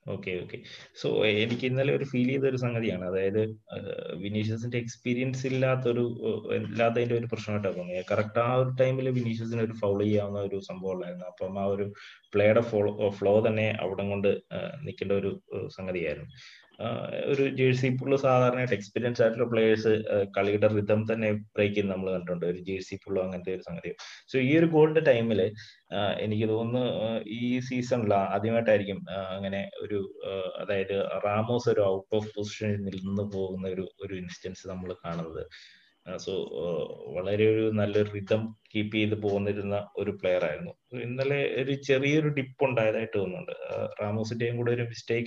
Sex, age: male, 20-39